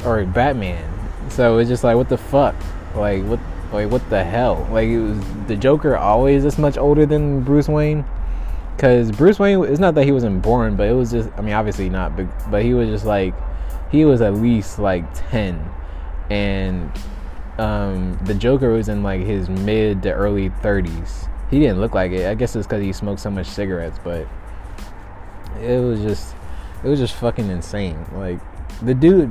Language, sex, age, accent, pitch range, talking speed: English, male, 20-39, American, 90-120 Hz, 190 wpm